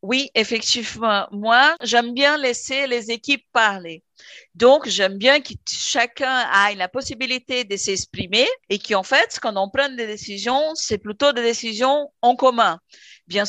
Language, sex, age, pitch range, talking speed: English, female, 50-69, 205-255 Hz, 155 wpm